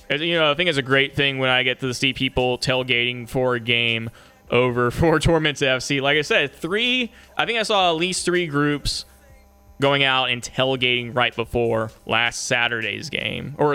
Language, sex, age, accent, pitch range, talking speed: English, male, 20-39, American, 120-145 Hz, 190 wpm